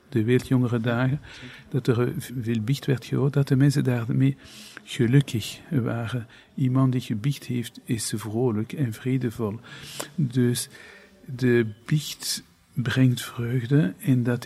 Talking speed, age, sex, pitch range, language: 125 wpm, 50-69, male, 115-135 Hz, Dutch